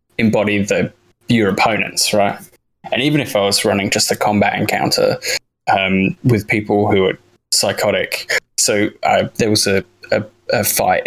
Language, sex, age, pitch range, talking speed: English, male, 10-29, 95-105 Hz, 155 wpm